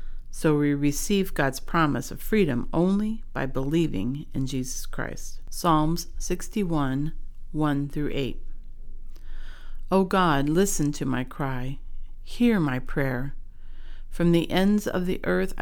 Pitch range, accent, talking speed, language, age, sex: 140-175 Hz, American, 120 wpm, English, 50-69, female